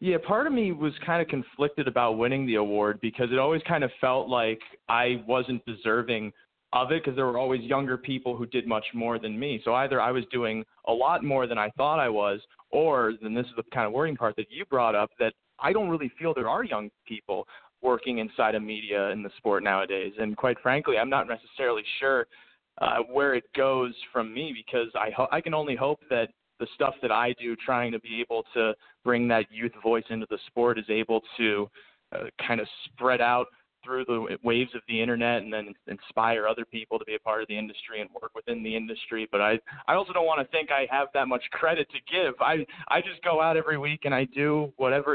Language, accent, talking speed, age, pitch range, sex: English, American, 230 wpm, 30-49, 115-135 Hz, male